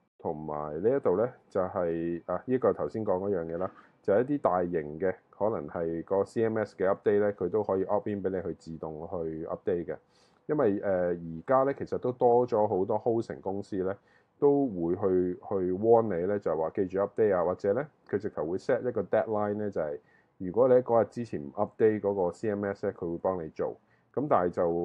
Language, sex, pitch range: Chinese, male, 85-105 Hz